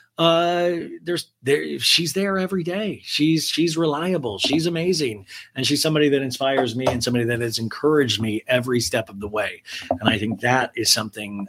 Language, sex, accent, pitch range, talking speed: English, male, American, 115-150 Hz, 185 wpm